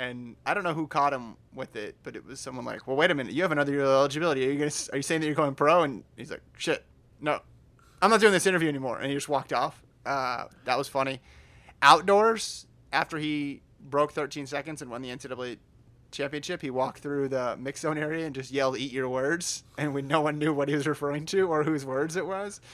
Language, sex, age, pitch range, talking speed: English, male, 20-39, 125-150 Hz, 245 wpm